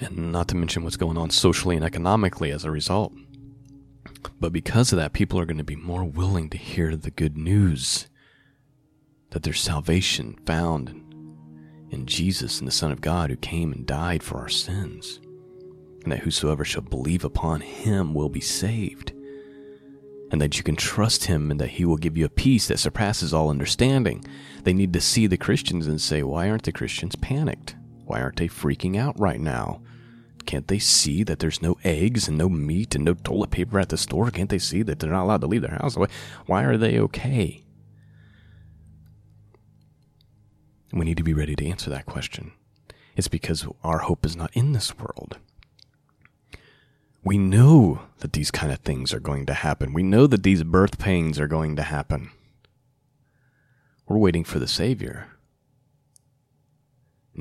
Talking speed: 180 wpm